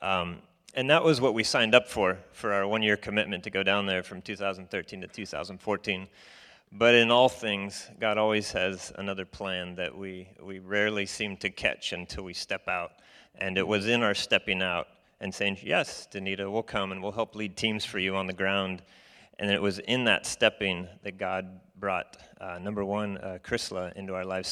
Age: 30-49